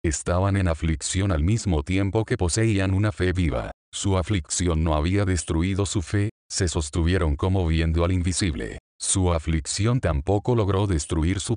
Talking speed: 155 wpm